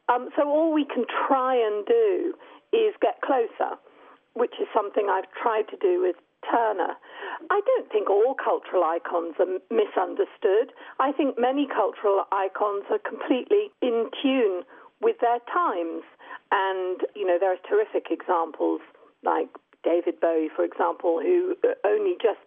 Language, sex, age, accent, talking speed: English, female, 50-69, British, 145 wpm